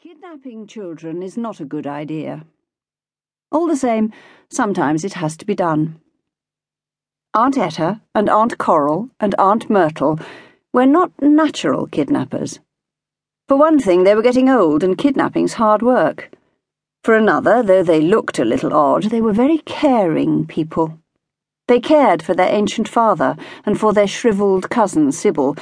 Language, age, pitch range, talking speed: English, 50-69, 165-260 Hz, 150 wpm